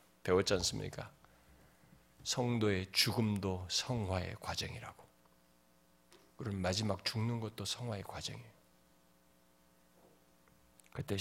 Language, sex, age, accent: Korean, male, 40-59, native